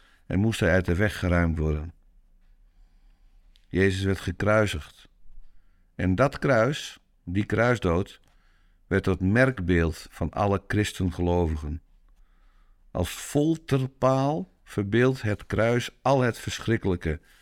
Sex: male